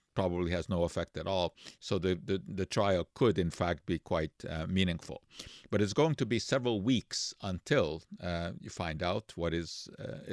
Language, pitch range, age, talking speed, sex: English, 90-120 Hz, 50-69, 190 wpm, male